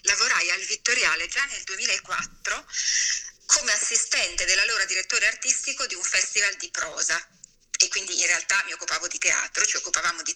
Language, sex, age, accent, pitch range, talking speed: Italian, female, 30-49, native, 180-245 Hz, 155 wpm